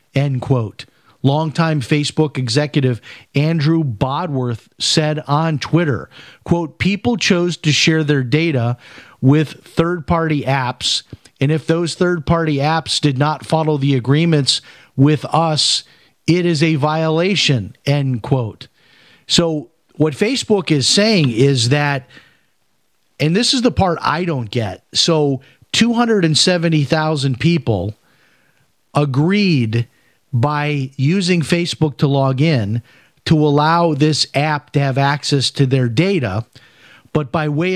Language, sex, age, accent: English, male, 40-59, American